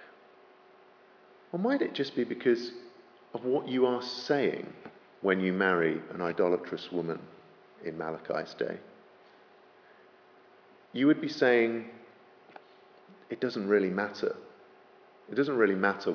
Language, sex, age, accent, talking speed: English, male, 50-69, British, 120 wpm